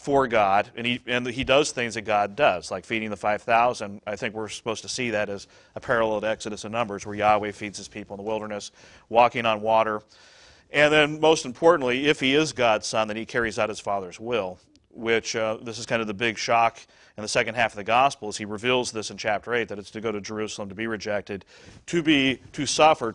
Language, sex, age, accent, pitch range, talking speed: English, male, 40-59, American, 105-125 Hz, 240 wpm